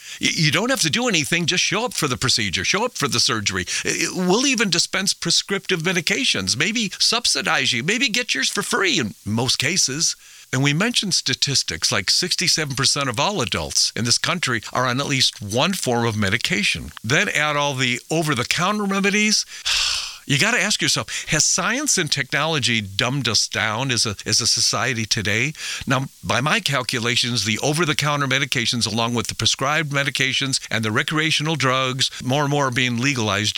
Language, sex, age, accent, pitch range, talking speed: English, male, 50-69, American, 125-170 Hz, 180 wpm